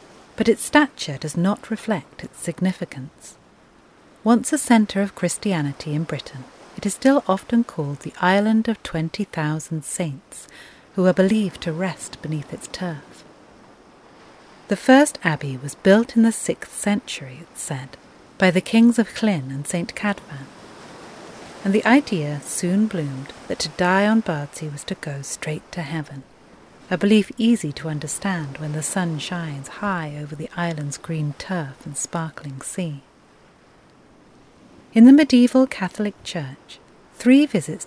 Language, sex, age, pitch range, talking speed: English, female, 40-59, 150-210 Hz, 145 wpm